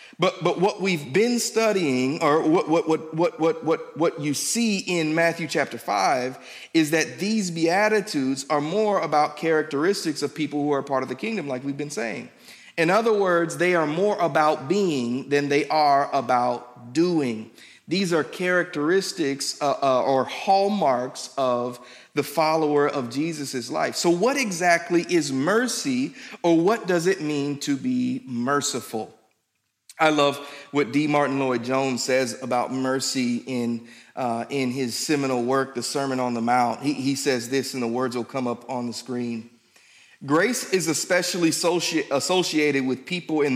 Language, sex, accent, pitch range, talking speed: English, male, American, 130-170 Hz, 165 wpm